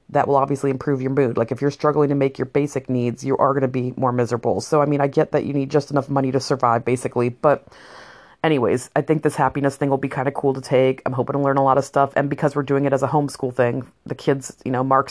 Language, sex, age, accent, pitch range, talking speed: English, female, 30-49, American, 140-160 Hz, 285 wpm